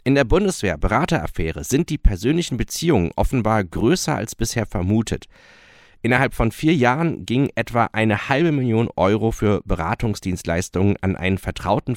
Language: German